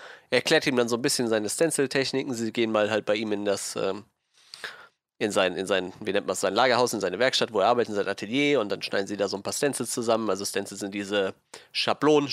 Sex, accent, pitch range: male, German, 110-135 Hz